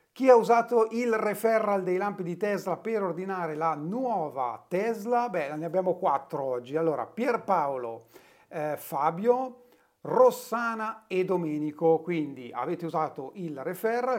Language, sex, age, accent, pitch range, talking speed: Italian, male, 40-59, native, 160-220 Hz, 130 wpm